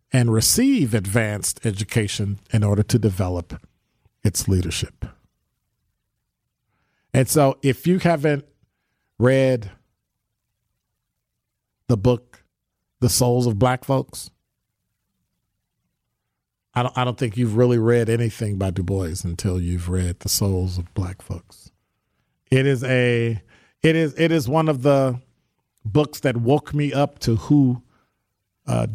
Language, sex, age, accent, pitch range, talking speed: English, male, 50-69, American, 105-130 Hz, 125 wpm